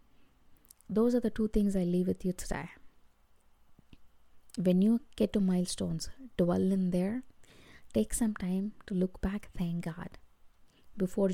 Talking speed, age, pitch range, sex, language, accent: 145 wpm, 20-39, 175-200 Hz, female, English, Indian